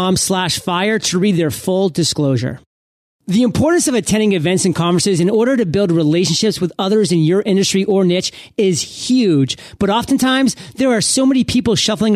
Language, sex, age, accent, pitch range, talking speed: English, male, 30-49, American, 170-220 Hz, 180 wpm